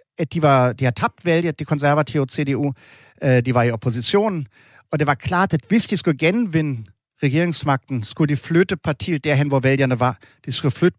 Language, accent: Danish, German